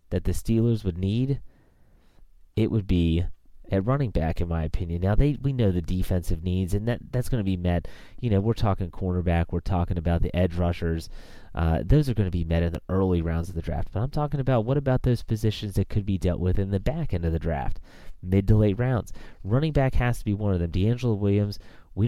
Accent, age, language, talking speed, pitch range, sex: American, 30-49, English, 240 wpm, 85-110 Hz, male